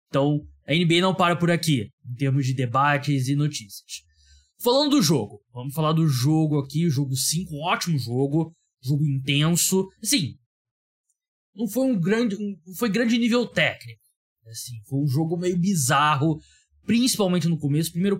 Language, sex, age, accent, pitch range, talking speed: Portuguese, male, 20-39, Brazilian, 135-180 Hz, 160 wpm